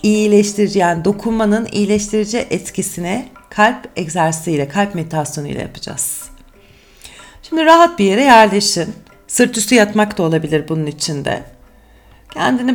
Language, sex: Turkish, female